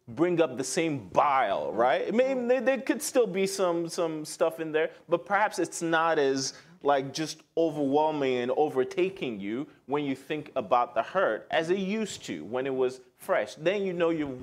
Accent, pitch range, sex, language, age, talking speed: American, 135-185 Hz, male, English, 30-49, 190 wpm